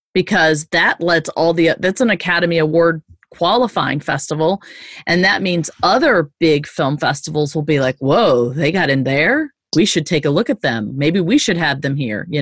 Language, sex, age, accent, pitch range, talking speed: English, female, 30-49, American, 155-215 Hz, 195 wpm